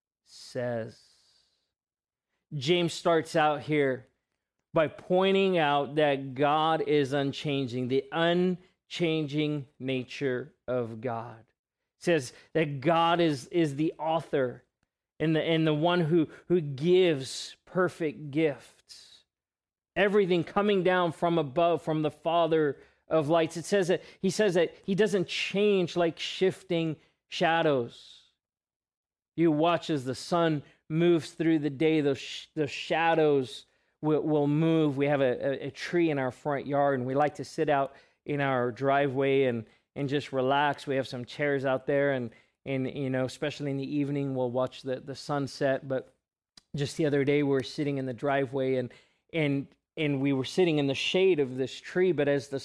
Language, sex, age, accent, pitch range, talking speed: English, male, 40-59, American, 135-165 Hz, 160 wpm